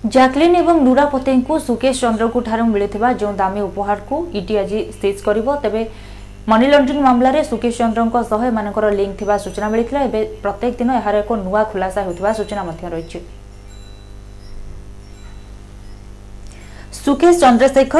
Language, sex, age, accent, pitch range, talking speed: Hindi, female, 20-39, native, 205-260 Hz, 35 wpm